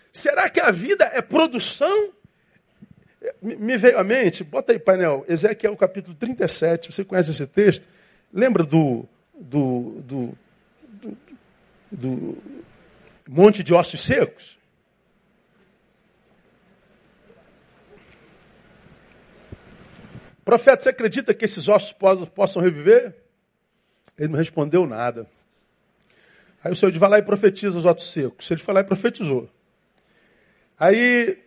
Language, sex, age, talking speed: Portuguese, male, 50-69, 115 wpm